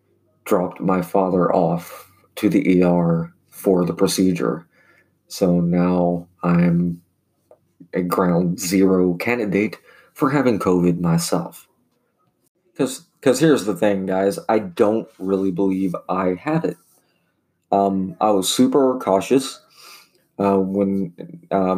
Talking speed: 115 wpm